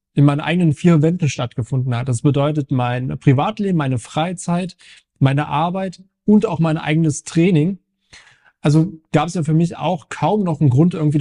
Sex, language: male, German